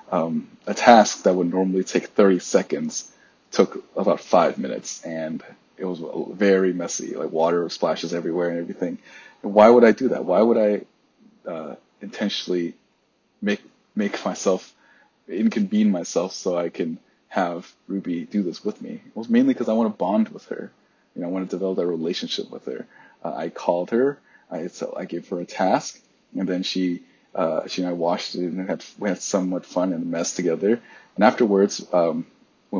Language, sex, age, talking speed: English, male, 30-49, 190 wpm